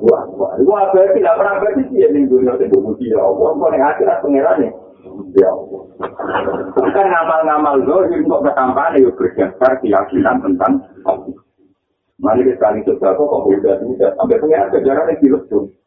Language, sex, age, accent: Indonesian, male, 50-69, native